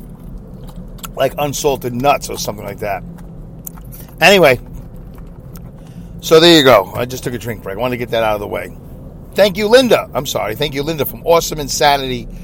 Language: English